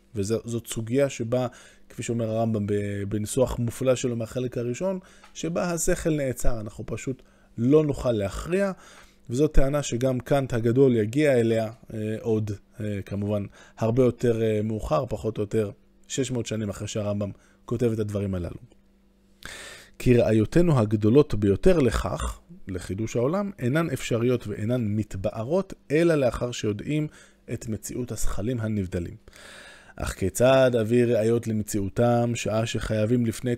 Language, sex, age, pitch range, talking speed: Hebrew, male, 20-39, 105-135 Hz, 125 wpm